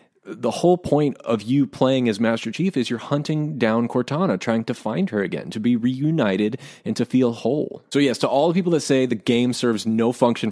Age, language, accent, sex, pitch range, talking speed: 30-49, English, American, male, 110-135 Hz, 220 wpm